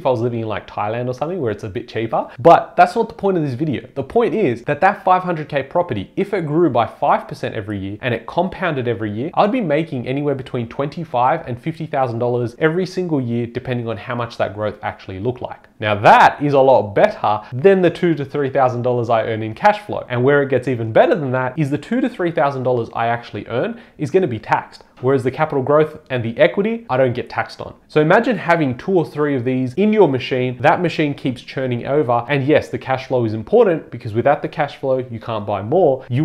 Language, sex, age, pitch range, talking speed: English, male, 30-49, 120-155 Hz, 235 wpm